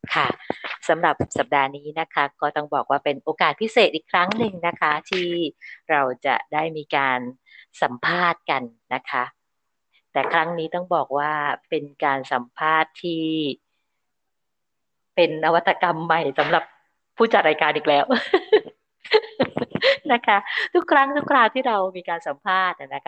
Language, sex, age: Thai, female, 20-39